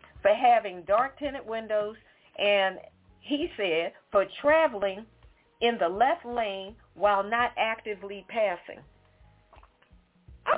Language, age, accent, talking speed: English, 40-59, American, 110 wpm